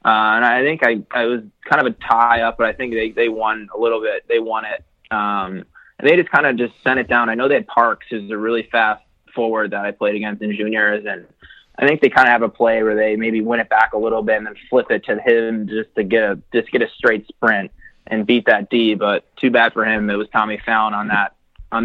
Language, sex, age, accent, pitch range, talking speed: English, male, 20-39, American, 105-120 Hz, 270 wpm